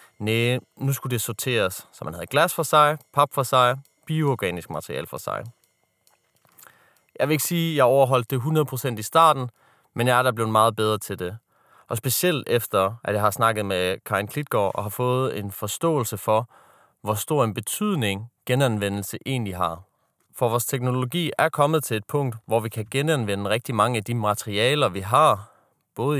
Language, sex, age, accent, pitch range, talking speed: Danish, male, 30-49, native, 110-140 Hz, 185 wpm